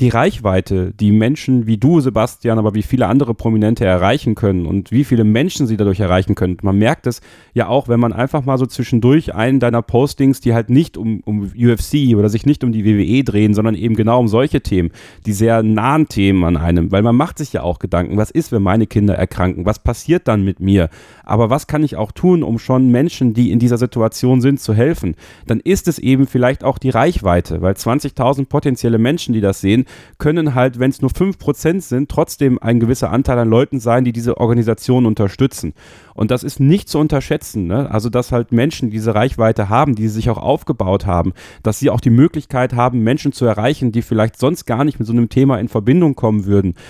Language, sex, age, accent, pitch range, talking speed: German, male, 30-49, German, 105-135 Hz, 215 wpm